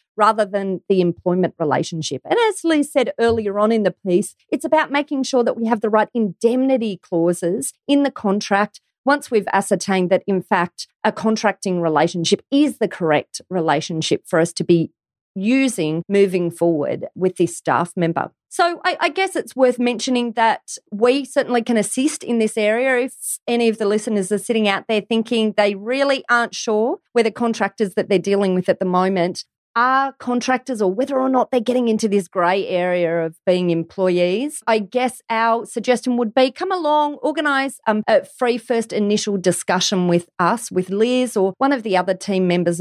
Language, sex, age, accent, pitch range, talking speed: English, female, 30-49, Australian, 180-245 Hz, 185 wpm